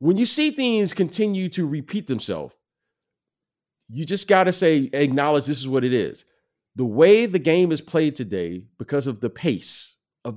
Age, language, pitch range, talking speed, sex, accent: 40-59, English, 125-170 Hz, 180 wpm, male, American